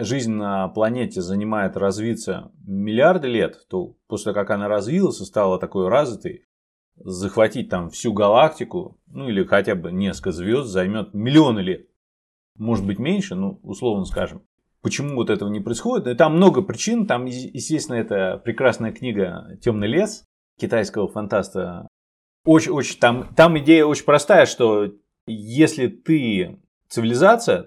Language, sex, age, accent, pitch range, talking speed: Russian, male, 30-49, native, 105-155 Hz, 140 wpm